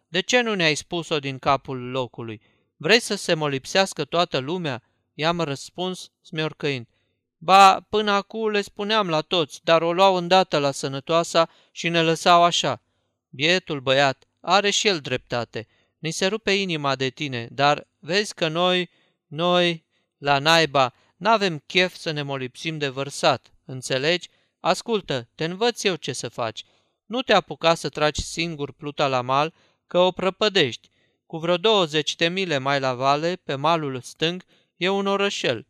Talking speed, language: 155 wpm, Romanian